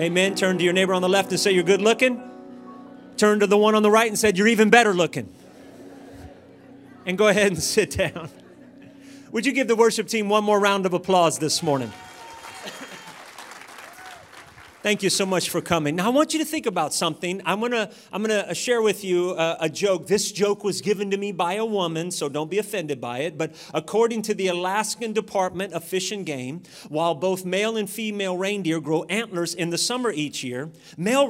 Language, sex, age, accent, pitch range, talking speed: English, male, 40-59, American, 170-220 Hz, 205 wpm